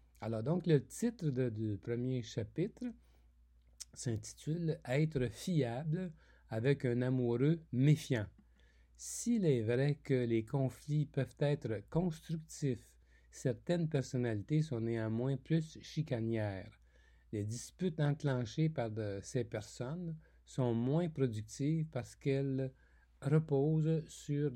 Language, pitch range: French, 110-150 Hz